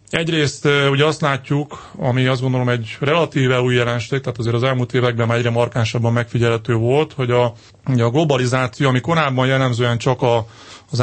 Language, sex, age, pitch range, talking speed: Hungarian, male, 30-49, 120-135 Hz, 175 wpm